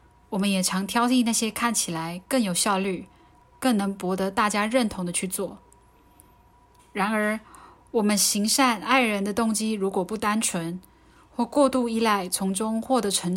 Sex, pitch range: female, 185-225 Hz